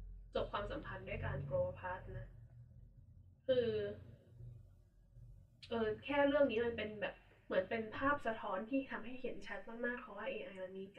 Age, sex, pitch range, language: 10-29, female, 175-230 Hz, Thai